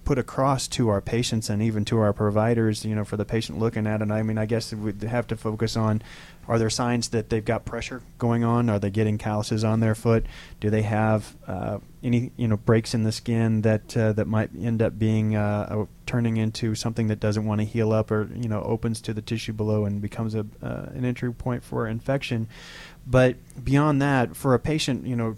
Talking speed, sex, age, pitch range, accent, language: 225 wpm, male, 30-49, 105-120 Hz, American, English